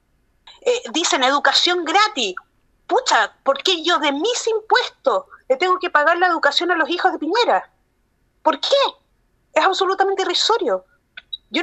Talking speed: 145 wpm